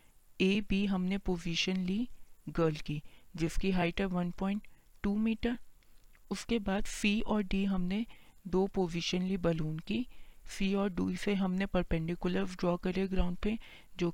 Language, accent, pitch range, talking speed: Hindi, native, 170-200 Hz, 145 wpm